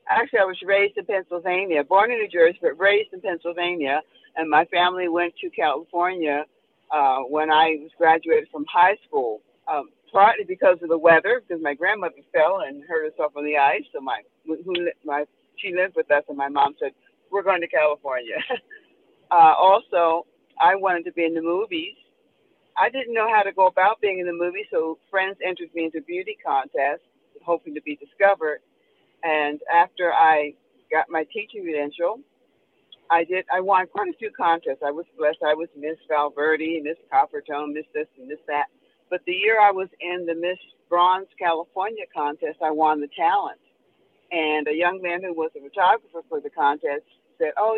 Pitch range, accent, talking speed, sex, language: 160-215 Hz, American, 185 wpm, female, English